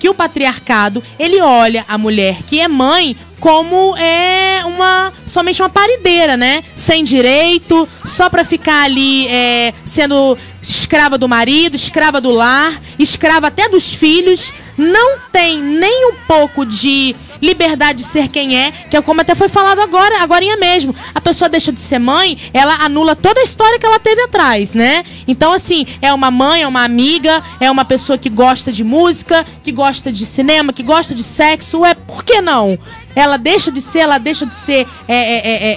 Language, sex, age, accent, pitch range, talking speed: Portuguese, female, 20-39, Brazilian, 250-335 Hz, 180 wpm